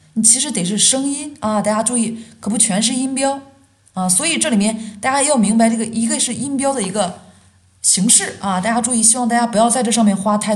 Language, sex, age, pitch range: Chinese, female, 20-39, 165-220 Hz